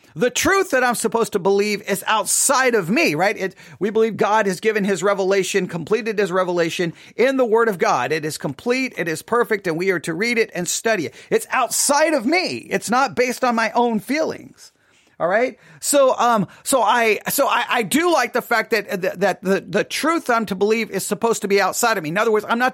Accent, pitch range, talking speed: American, 200-255 Hz, 230 wpm